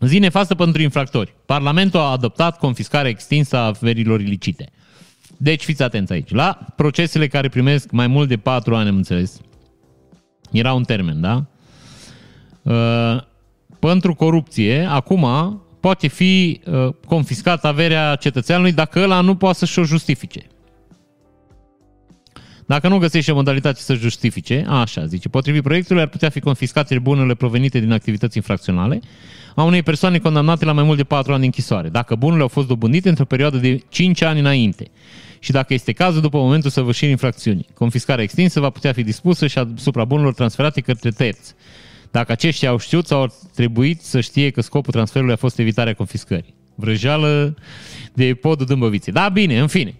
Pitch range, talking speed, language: 120-155 Hz, 160 wpm, Romanian